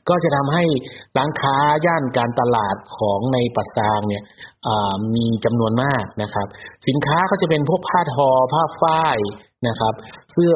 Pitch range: 110-140 Hz